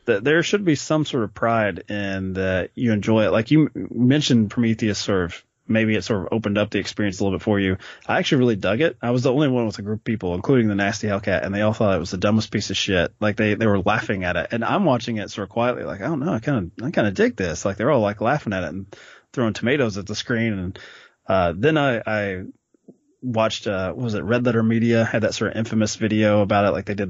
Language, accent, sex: English, American, male